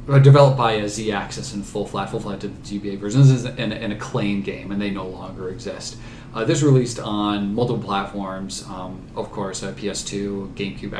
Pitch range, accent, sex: 105-130 Hz, American, male